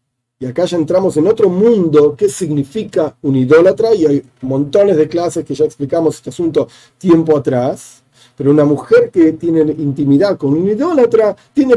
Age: 40-59